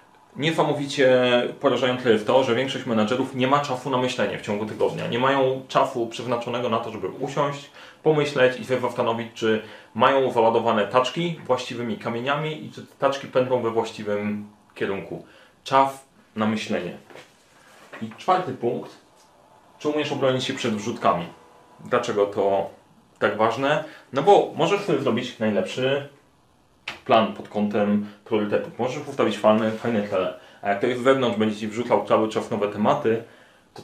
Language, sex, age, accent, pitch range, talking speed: Polish, male, 30-49, native, 110-130 Hz, 155 wpm